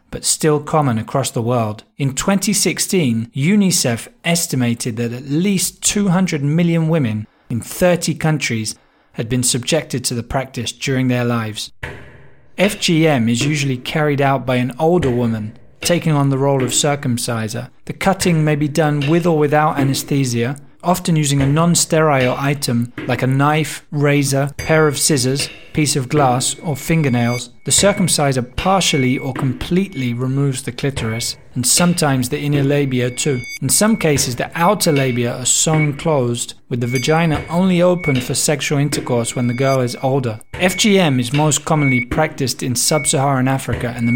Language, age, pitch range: English, 30-49, 125-160 Hz